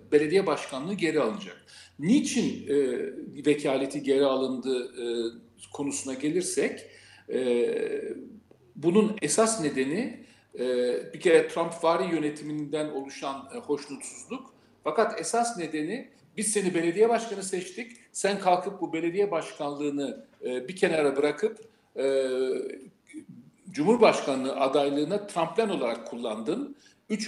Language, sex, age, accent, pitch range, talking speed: Turkish, male, 50-69, native, 145-220 Hz, 110 wpm